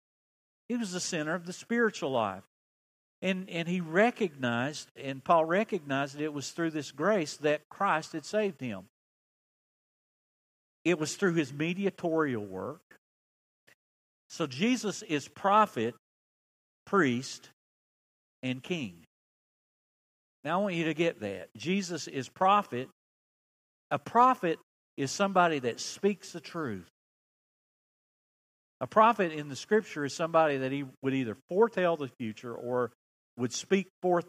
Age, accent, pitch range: 50-69, American, 125-185 Hz